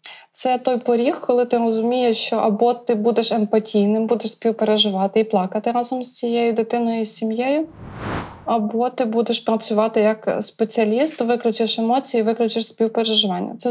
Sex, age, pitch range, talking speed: female, 20-39, 215-235 Hz, 140 wpm